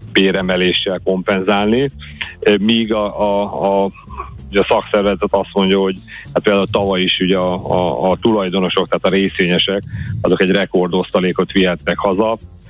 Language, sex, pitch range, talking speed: Hungarian, male, 95-105 Hz, 135 wpm